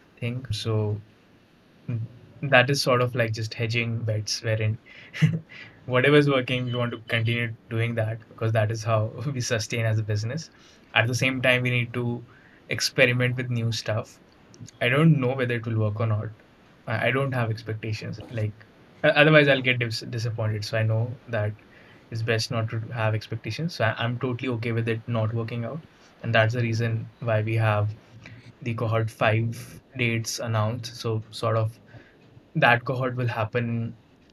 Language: English